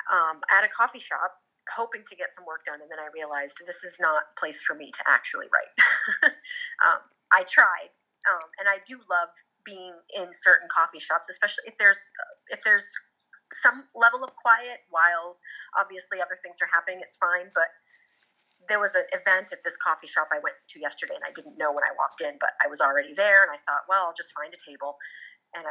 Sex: female